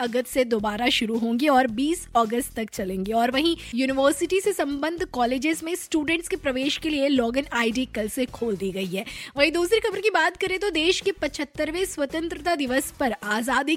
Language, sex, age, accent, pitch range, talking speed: Hindi, female, 20-39, native, 240-310 Hz, 55 wpm